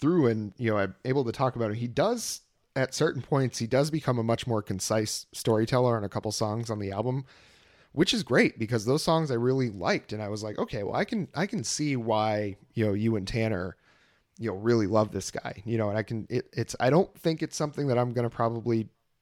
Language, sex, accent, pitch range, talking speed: English, male, American, 110-130 Hz, 240 wpm